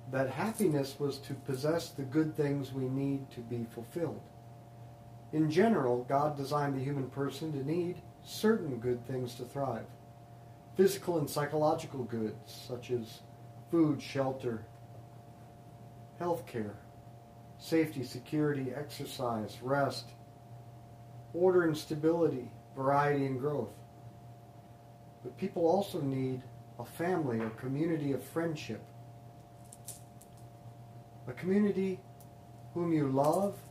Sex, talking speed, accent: male, 110 wpm, American